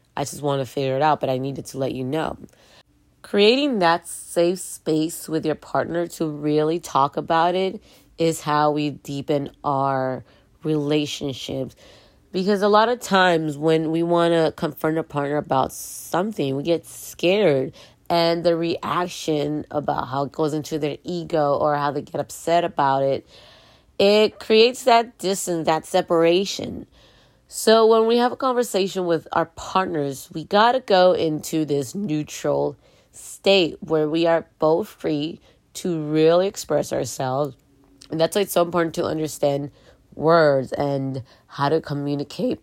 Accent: American